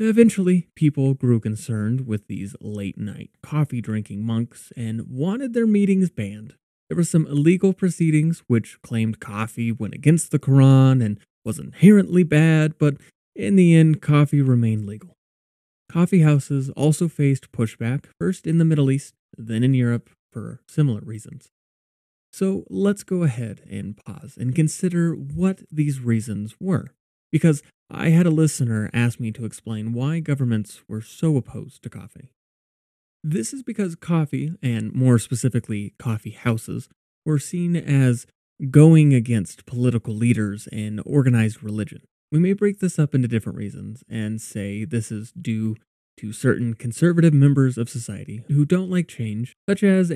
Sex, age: male, 30-49